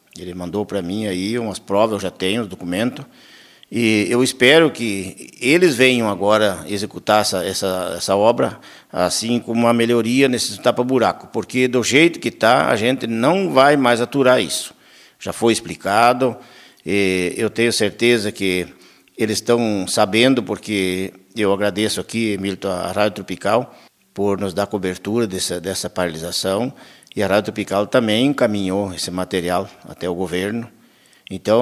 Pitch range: 95-120 Hz